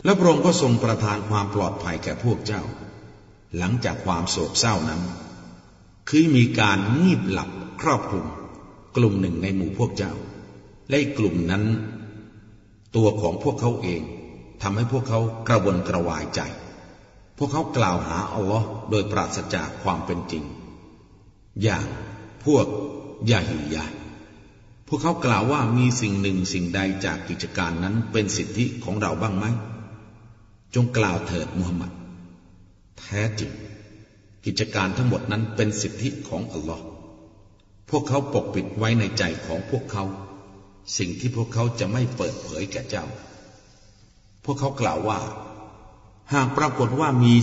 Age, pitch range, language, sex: 60-79, 90-115 Hz, Thai, male